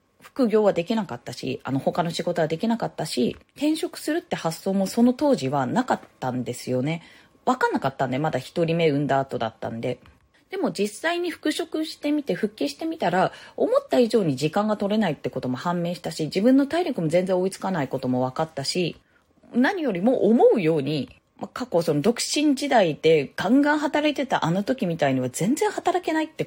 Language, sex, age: Japanese, female, 20-39